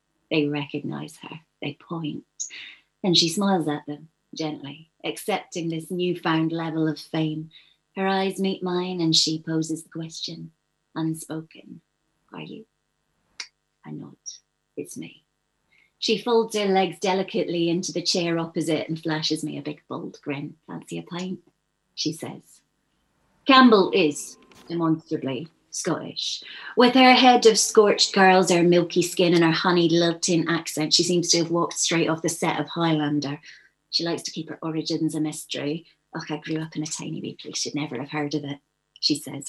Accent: British